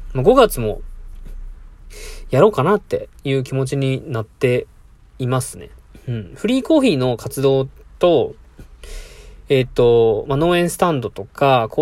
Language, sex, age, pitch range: Japanese, male, 20-39, 120-165 Hz